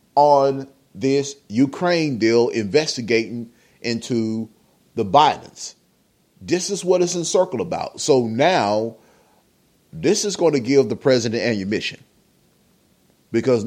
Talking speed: 115 wpm